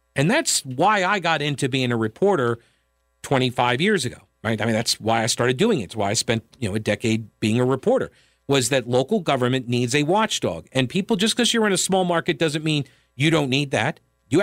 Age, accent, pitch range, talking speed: 50-69, American, 120-165 Hz, 230 wpm